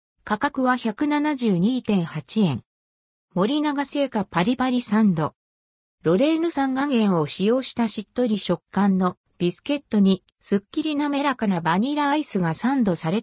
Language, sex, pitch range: Japanese, female, 180-265 Hz